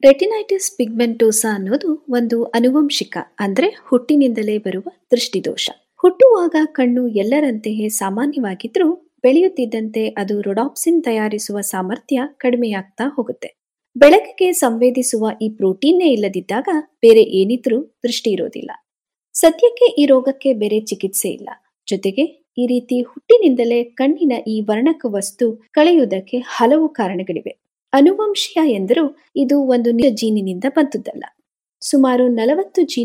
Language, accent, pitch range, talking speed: Kannada, native, 220-310 Hz, 85 wpm